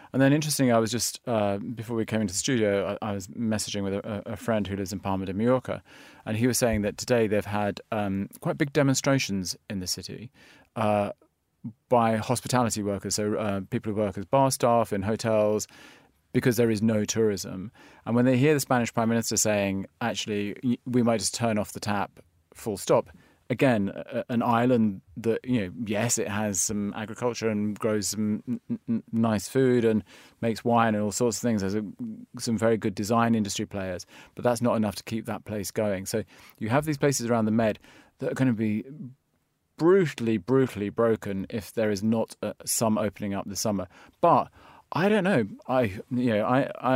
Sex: male